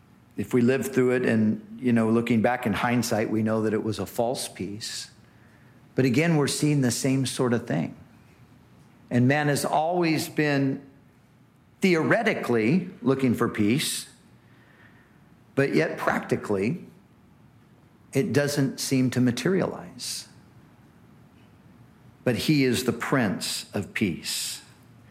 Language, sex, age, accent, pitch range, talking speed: English, male, 50-69, American, 120-145 Hz, 125 wpm